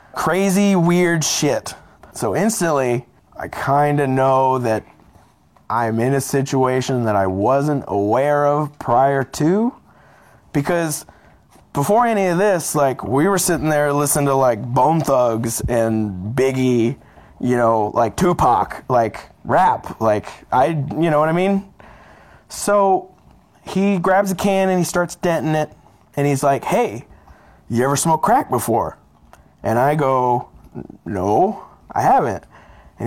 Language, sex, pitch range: English, male, 125-175 Hz